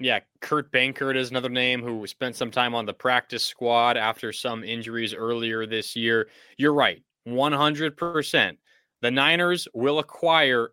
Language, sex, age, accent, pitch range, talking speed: English, male, 20-39, American, 120-145 Hz, 155 wpm